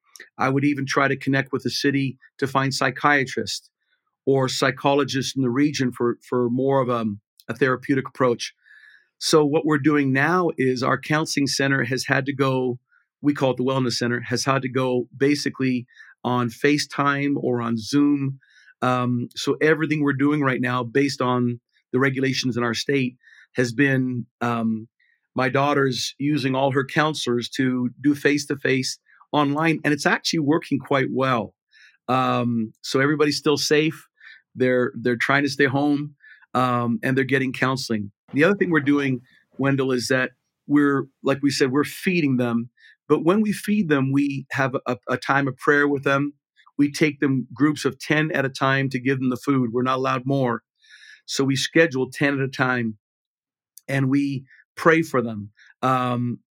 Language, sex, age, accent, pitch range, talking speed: English, male, 50-69, American, 125-145 Hz, 175 wpm